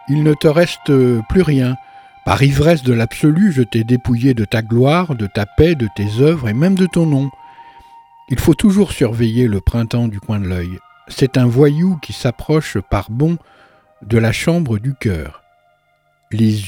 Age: 60-79